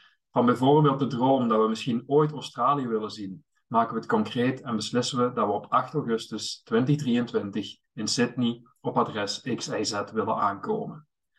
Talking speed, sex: 165 wpm, male